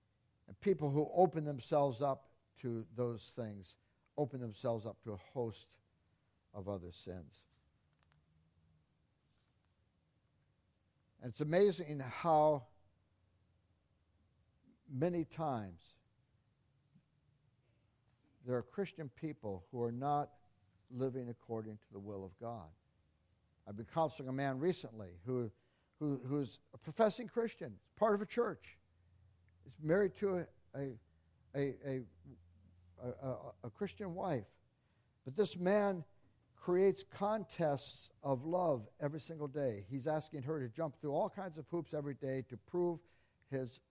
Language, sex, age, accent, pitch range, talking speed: English, male, 60-79, American, 105-150 Hz, 120 wpm